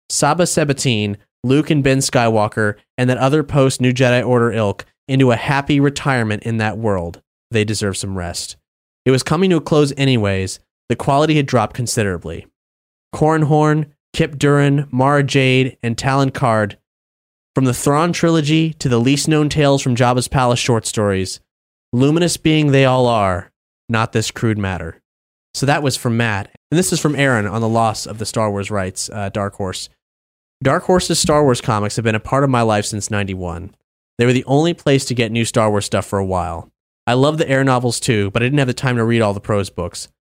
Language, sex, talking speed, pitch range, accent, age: English, male, 200 wpm, 100-140 Hz, American, 30-49